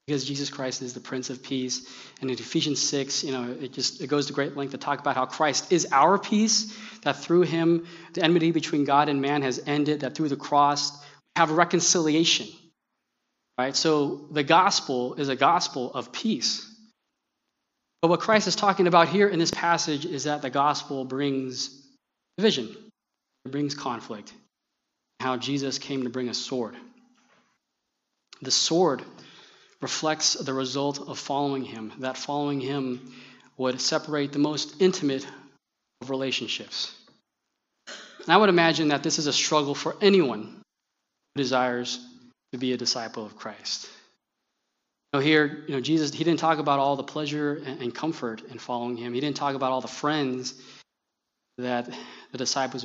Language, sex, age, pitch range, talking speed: English, male, 20-39, 130-160 Hz, 165 wpm